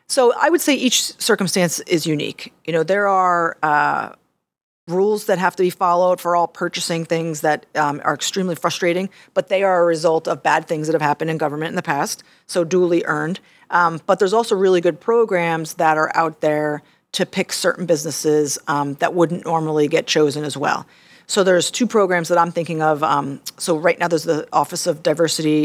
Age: 40-59